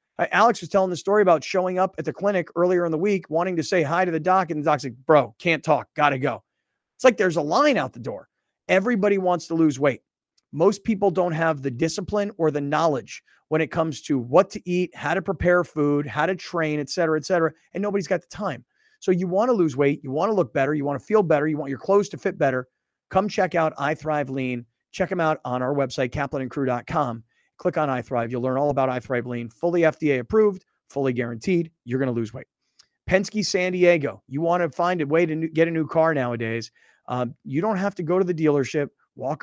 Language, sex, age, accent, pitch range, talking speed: English, male, 30-49, American, 145-180 Hz, 240 wpm